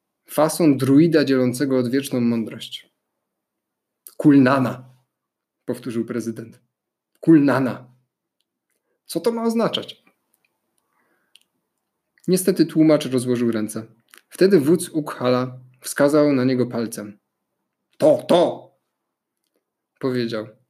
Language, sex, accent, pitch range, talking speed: Polish, male, native, 125-165 Hz, 80 wpm